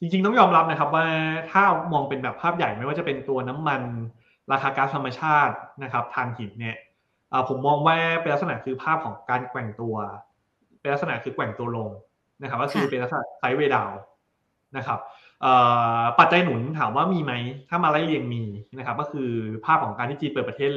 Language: Thai